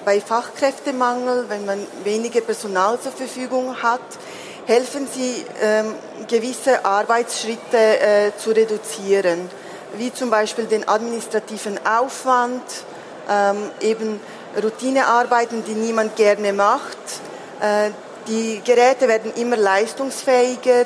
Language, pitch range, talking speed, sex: German, 215-245 Hz, 105 wpm, female